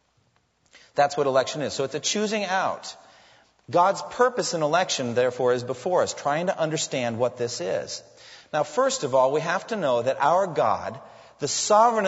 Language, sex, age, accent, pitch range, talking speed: English, male, 40-59, American, 140-210 Hz, 180 wpm